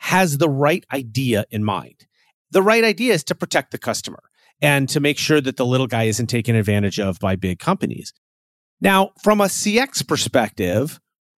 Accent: American